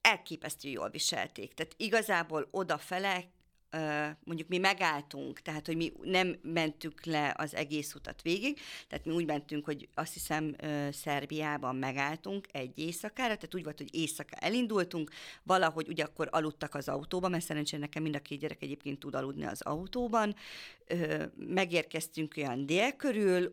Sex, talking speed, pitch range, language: female, 150 wpm, 150-185 Hz, Hungarian